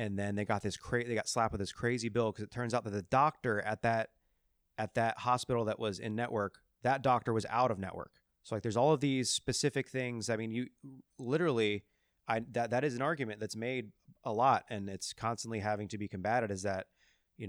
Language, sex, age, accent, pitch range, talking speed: English, male, 30-49, American, 100-115 Hz, 230 wpm